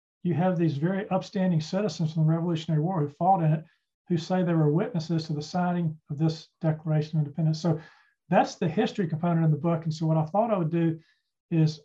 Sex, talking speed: male, 225 wpm